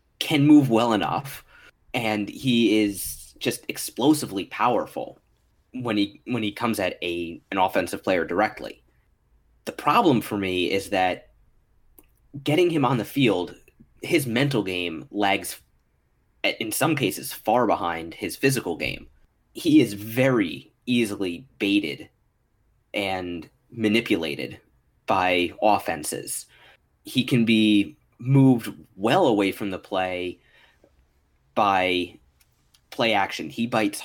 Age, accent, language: 20-39, American, English